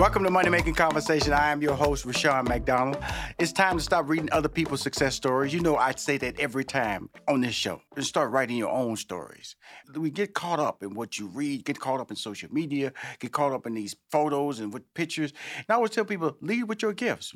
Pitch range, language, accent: 125-155 Hz, English, American